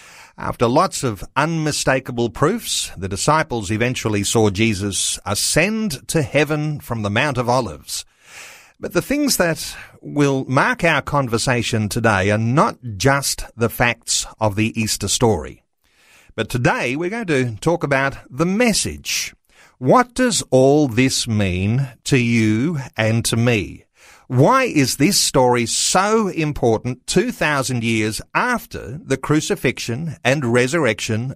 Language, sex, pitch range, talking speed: English, male, 110-155 Hz, 130 wpm